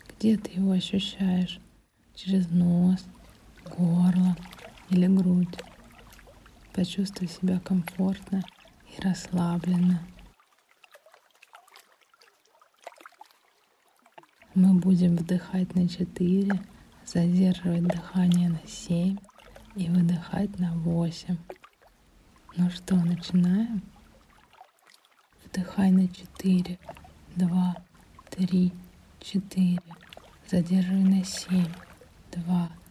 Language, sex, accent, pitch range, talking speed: Russian, female, native, 175-185 Hz, 75 wpm